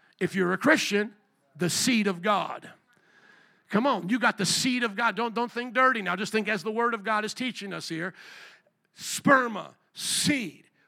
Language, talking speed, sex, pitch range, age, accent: English, 190 wpm, male, 205-275 Hz, 50-69, American